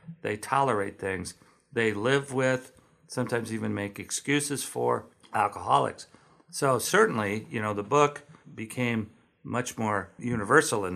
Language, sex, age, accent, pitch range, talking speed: English, male, 50-69, American, 100-125 Hz, 125 wpm